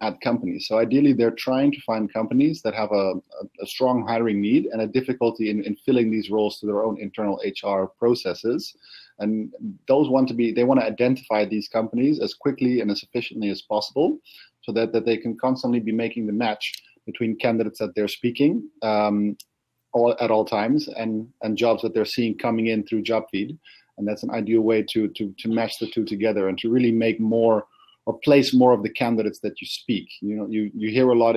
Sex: male